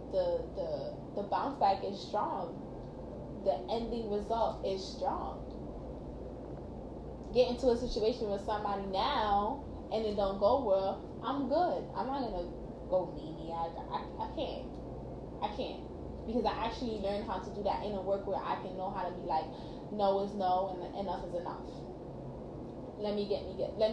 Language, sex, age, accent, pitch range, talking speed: English, female, 10-29, American, 200-275 Hz, 175 wpm